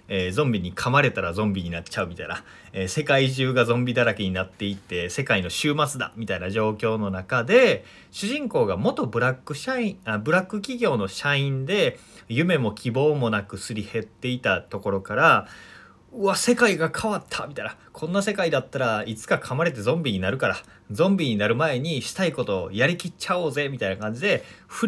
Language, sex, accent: Japanese, male, native